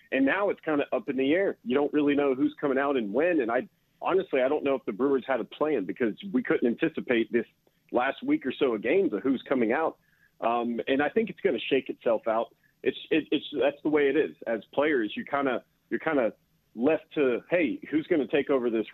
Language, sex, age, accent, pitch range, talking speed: English, male, 40-59, American, 125-165 Hz, 255 wpm